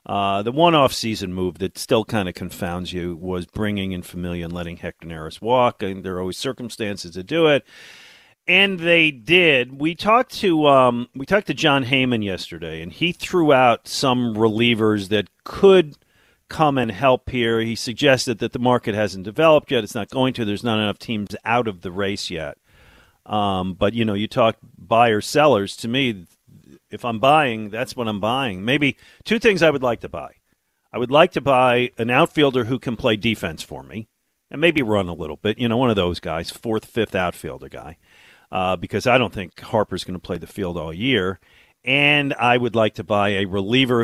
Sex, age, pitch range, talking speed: male, 40-59, 95-130 Hz, 205 wpm